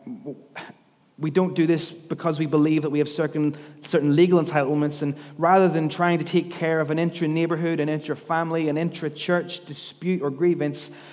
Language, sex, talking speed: English, male, 165 wpm